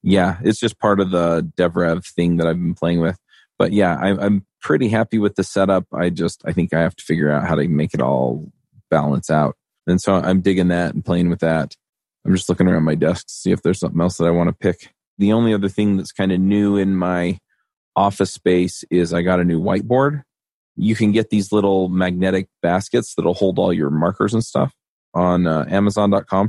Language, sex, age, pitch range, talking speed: English, male, 30-49, 85-100 Hz, 220 wpm